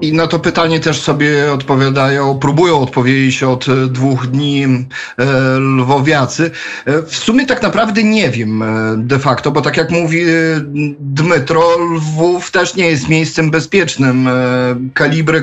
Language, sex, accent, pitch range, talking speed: Polish, male, native, 130-160 Hz, 130 wpm